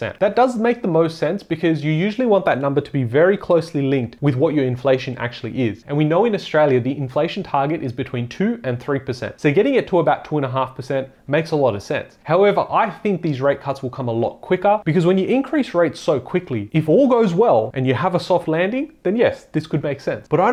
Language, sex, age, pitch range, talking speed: English, male, 30-49, 125-170 Hz, 255 wpm